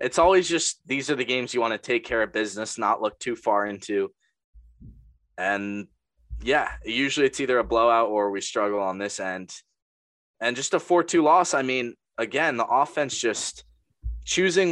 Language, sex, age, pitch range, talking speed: English, male, 20-39, 100-135 Hz, 180 wpm